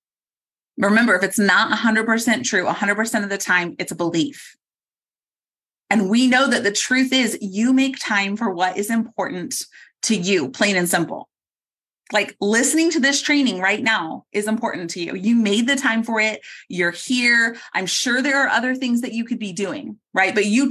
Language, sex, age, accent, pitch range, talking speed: English, female, 30-49, American, 195-255 Hz, 190 wpm